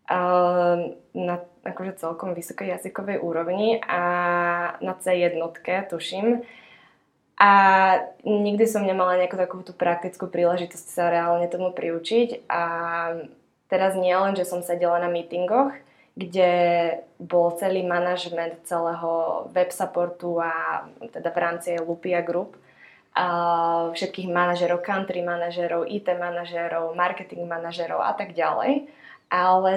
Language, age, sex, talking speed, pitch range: English, 20-39, female, 110 wpm, 170-190 Hz